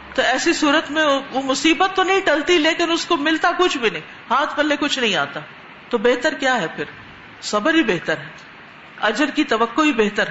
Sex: female